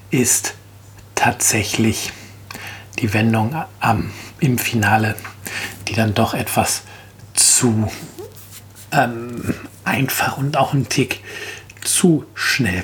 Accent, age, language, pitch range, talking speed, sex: German, 50-69, German, 105-120 Hz, 95 wpm, male